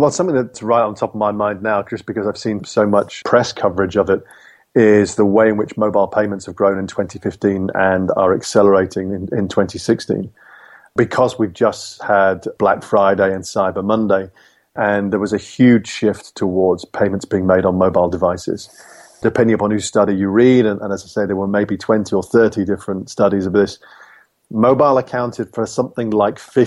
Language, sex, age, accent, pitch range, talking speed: English, male, 30-49, British, 100-110 Hz, 190 wpm